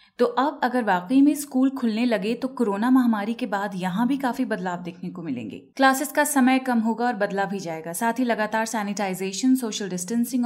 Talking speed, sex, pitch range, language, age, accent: 200 wpm, female, 205-255 Hz, Hindi, 30-49, native